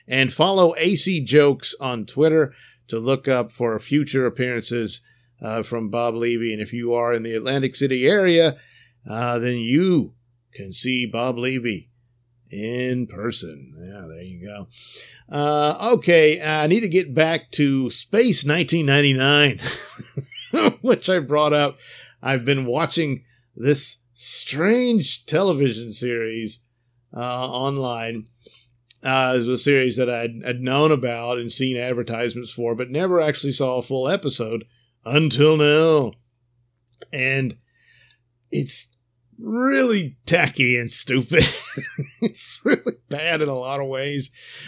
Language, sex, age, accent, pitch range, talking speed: English, male, 50-69, American, 120-150 Hz, 130 wpm